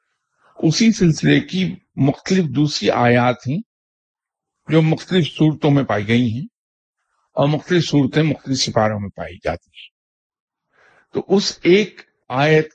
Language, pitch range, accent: English, 110-160 Hz, Indian